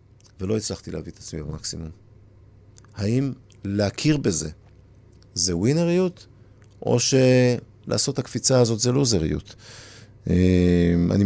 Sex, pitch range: male, 90-115 Hz